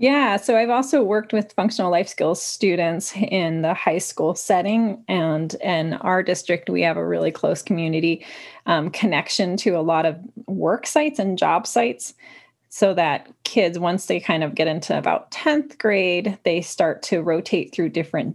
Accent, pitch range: American, 165-225 Hz